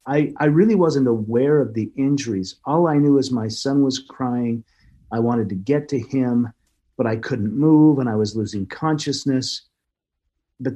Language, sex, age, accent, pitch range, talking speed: English, male, 50-69, American, 100-140 Hz, 180 wpm